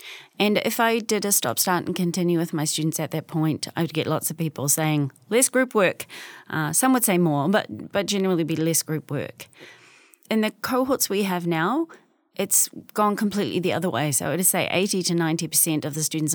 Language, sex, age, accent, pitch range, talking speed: English, female, 30-49, Australian, 160-200 Hz, 215 wpm